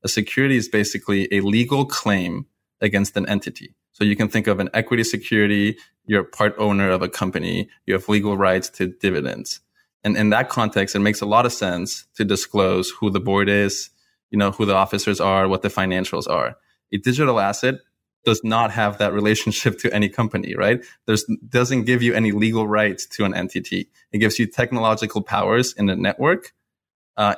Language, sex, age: English, male, 20-39